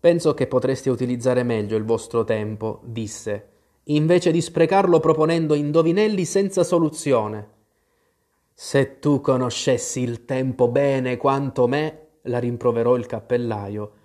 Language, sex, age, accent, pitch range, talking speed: Italian, male, 20-39, native, 120-180 Hz, 120 wpm